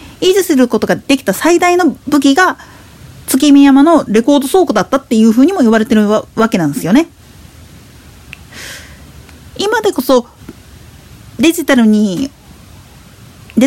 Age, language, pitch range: 40-59, Japanese, 215-305 Hz